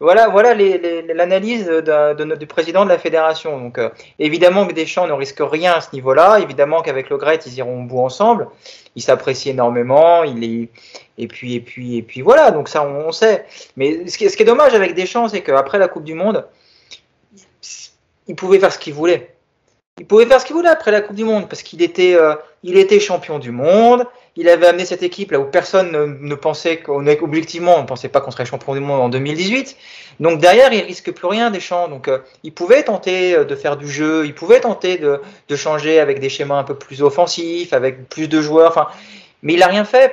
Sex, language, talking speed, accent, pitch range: male, French, 235 wpm, French, 145-210 Hz